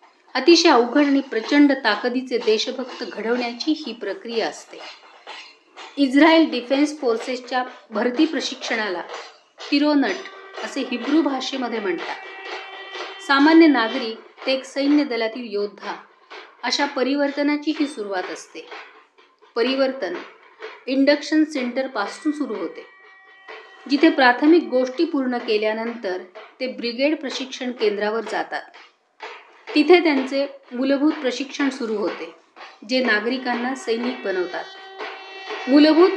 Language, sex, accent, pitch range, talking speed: Marathi, female, native, 240-310 Hz, 80 wpm